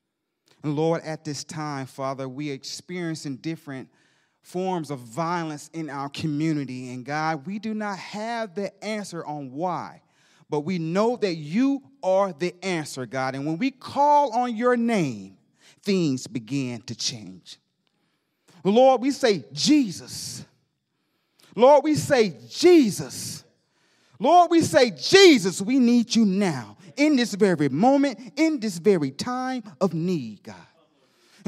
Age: 30-49